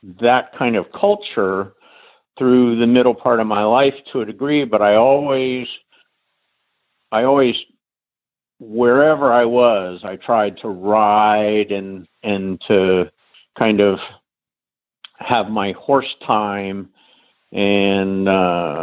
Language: English